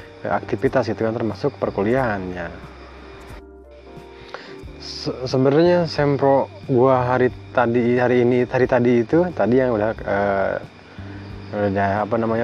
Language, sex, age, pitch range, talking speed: Malay, male, 20-39, 100-130 Hz, 110 wpm